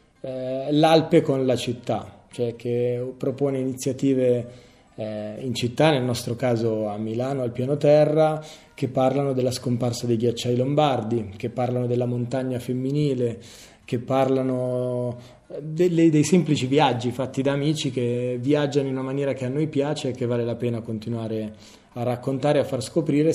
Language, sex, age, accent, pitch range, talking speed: Italian, male, 30-49, native, 125-150 Hz, 150 wpm